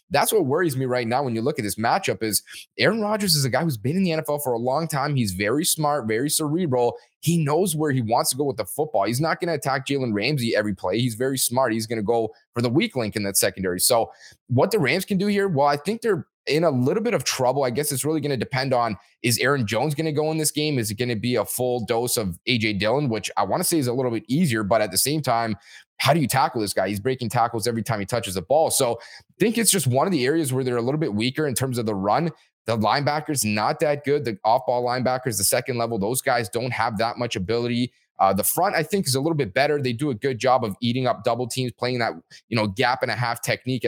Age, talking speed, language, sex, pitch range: 20-39, 285 wpm, English, male, 115-145 Hz